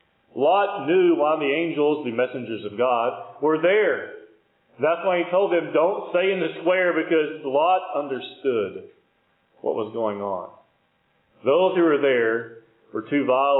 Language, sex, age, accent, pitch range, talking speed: English, male, 40-59, American, 145-185 Hz, 155 wpm